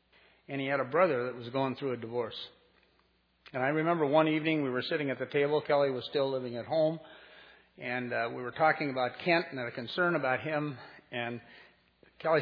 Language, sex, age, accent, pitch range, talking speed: English, male, 50-69, American, 120-150 Hz, 205 wpm